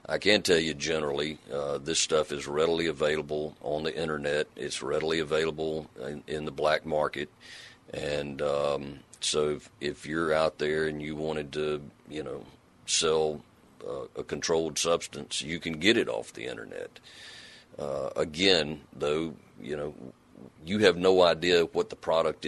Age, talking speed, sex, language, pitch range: 40-59, 160 wpm, male, English, 75-80 Hz